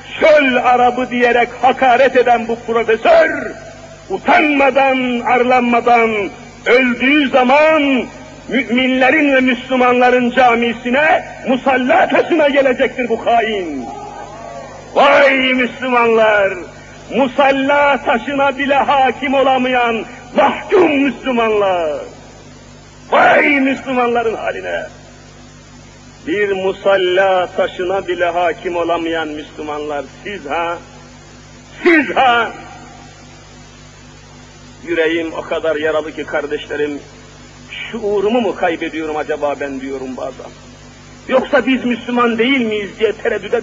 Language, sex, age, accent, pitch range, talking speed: Turkish, male, 50-69, native, 225-295 Hz, 85 wpm